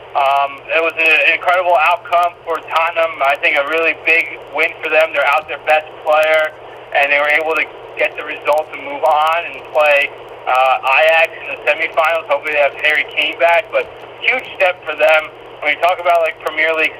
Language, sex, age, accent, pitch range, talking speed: English, male, 30-49, American, 140-165 Hz, 200 wpm